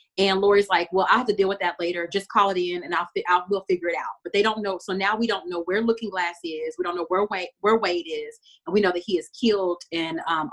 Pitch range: 170-205 Hz